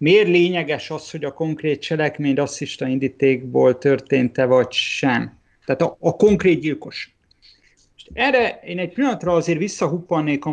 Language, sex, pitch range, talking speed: Hungarian, male, 135-160 Hz, 135 wpm